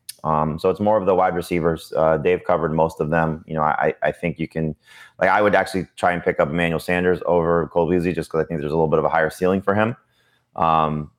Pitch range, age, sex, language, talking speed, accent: 80-90 Hz, 20-39, male, English, 255 wpm, American